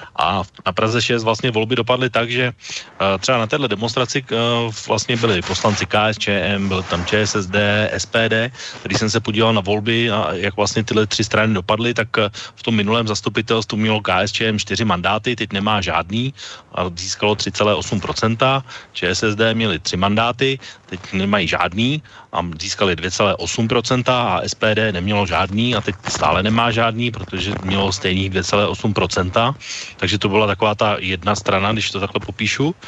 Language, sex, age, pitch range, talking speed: Slovak, male, 30-49, 95-115 Hz, 150 wpm